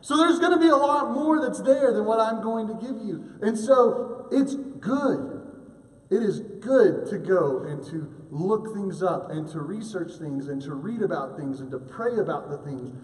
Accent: American